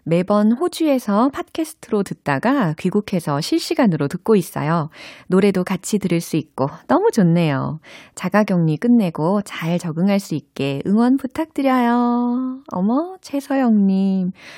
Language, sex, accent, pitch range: Korean, female, native, 160-220 Hz